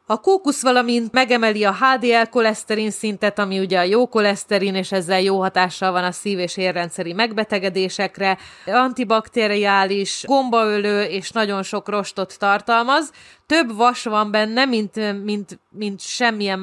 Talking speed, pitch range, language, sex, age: 135 wpm, 195-225 Hz, Hungarian, female, 30-49